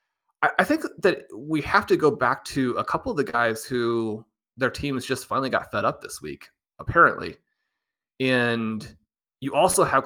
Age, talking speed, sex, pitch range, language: 30-49, 175 wpm, male, 110-140 Hz, English